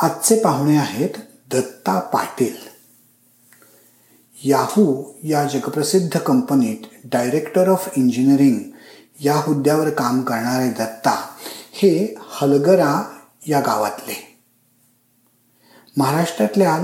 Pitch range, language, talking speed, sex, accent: 125-165 Hz, Marathi, 80 wpm, male, native